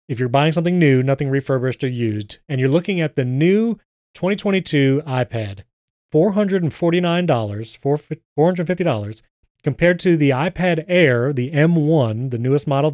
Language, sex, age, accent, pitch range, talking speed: English, male, 30-49, American, 130-170 Hz, 135 wpm